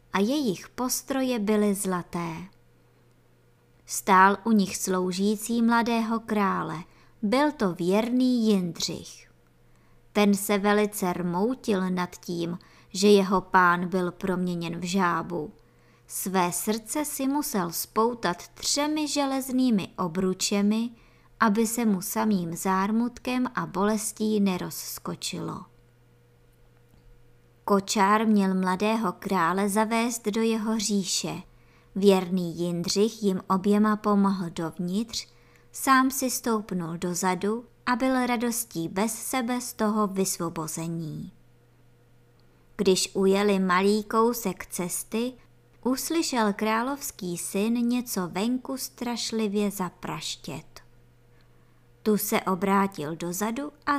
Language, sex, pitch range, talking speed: Czech, male, 180-225 Hz, 95 wpm